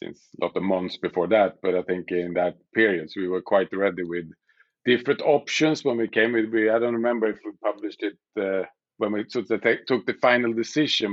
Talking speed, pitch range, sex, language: 225 wpm, 95-115 Hz, male, English